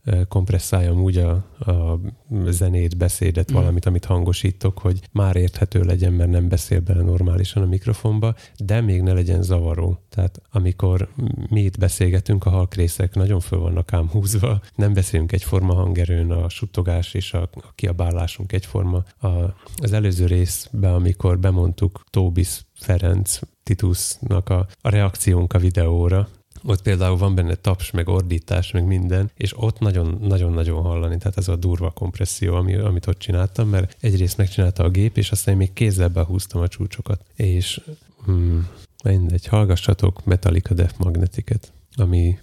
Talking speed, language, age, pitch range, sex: 145 wpm, Hungarian, 30-49, 90-100 Hz, male